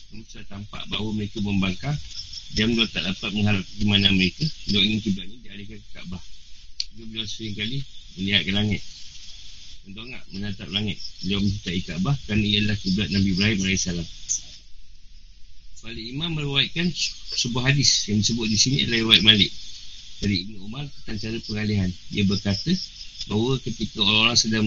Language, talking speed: Malay, 150 wpm